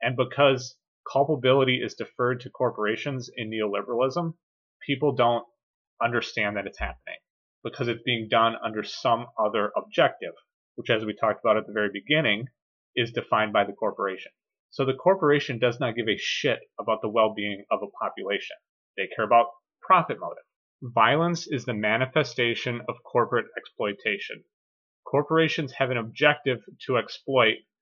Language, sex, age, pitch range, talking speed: English, male, 30-49, 115-140 Hz, 150 wpm